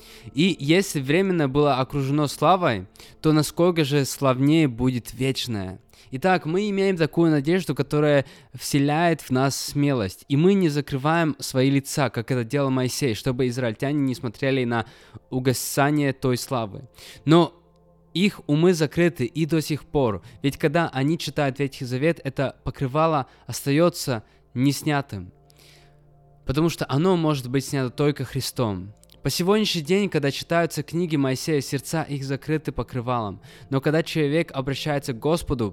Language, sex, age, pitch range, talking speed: Russian, male, 20-39, 125-150 Hz, 140 wpm